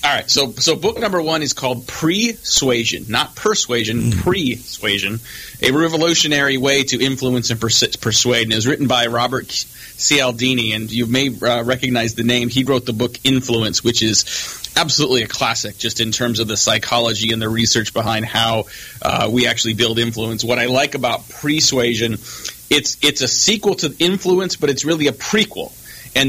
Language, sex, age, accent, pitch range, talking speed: English, male, 30-49, American, 115-135 Hz, 180 wpm